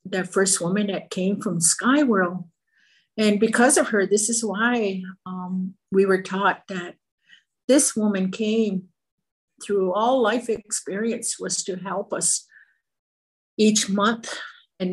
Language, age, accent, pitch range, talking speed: English, 50-69, American, 180-215 Hz, 135 wpm